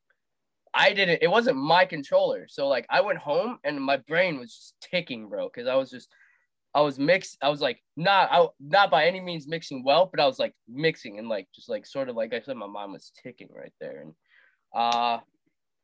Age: 20-39